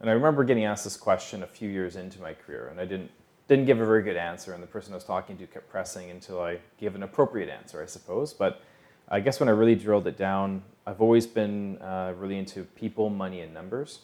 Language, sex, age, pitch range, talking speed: English, male, 30-49, 90-105 Hz, 250 wpm